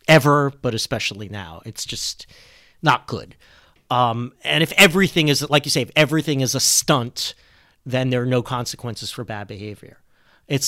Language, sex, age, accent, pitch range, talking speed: English, male, 40-59, American, 120-165 Hz, 170 wpm